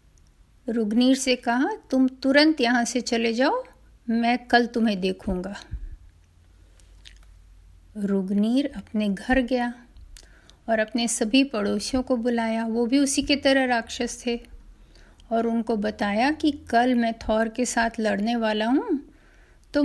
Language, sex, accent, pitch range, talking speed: Hindi, female, native, 210-265 Hz, 130 wpm